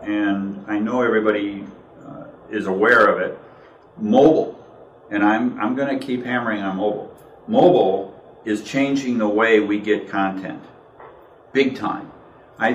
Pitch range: 105-135 Hz